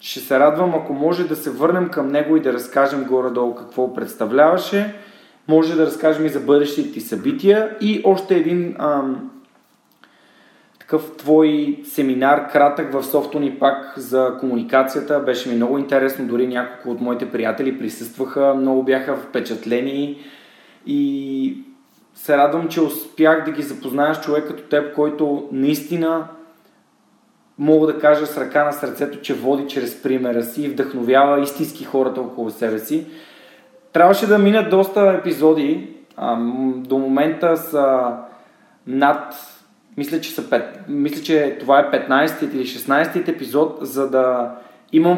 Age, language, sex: 30-49, Bulgarian, male